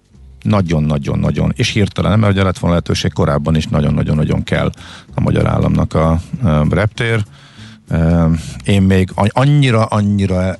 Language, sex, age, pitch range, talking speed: Hungarian, male, 50-69, 85-110 Hz, 100 wpm